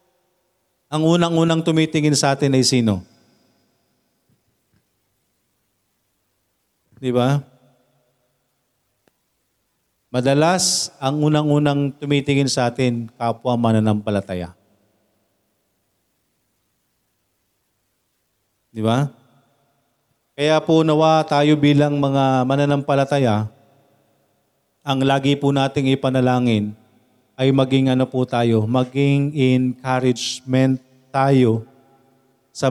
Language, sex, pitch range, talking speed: Filipino, male, 125-150 Hz, 70 wpm